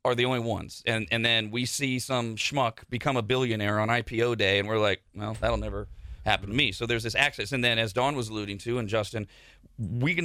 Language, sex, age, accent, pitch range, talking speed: English, male, 40-59, American, 115-160 Hz, 240 wpm